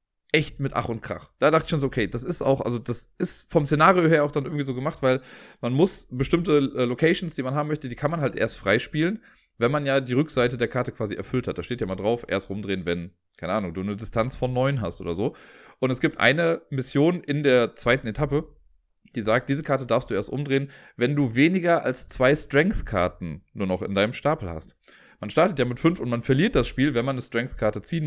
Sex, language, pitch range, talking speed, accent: male, German, 110-150 Hz, 240 wpm, German